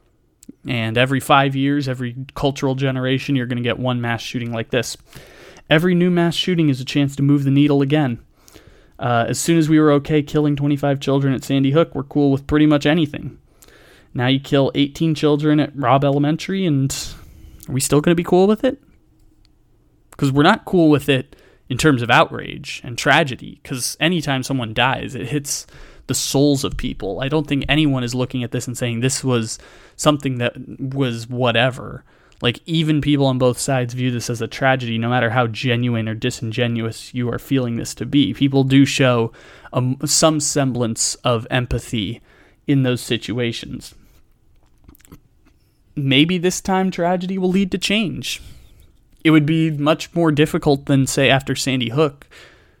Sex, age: male, 20-39